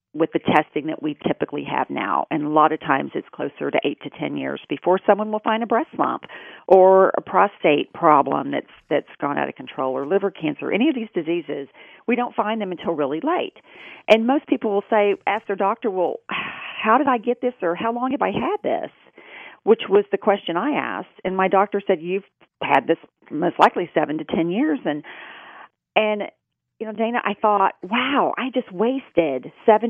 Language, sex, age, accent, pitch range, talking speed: English, female, 40-59, American, 170-225 Hz, 205 wpm